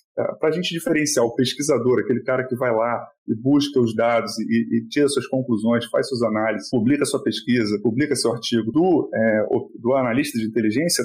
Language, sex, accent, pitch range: Portuguese, male, Brazilian, 115-150 Hz